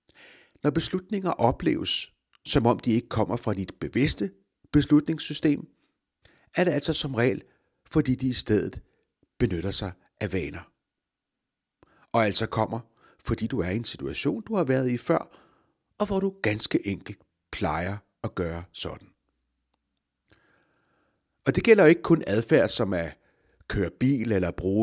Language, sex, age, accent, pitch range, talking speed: Danish, male, 60-79, native, 95-140 Hz, 145 wpm